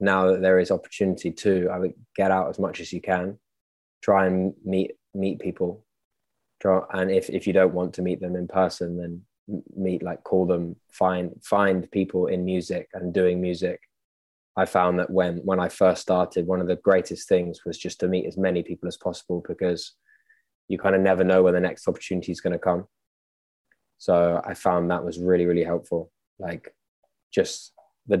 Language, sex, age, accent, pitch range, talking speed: English, male, 20-39, British, 90-100 Hz, 195 wpm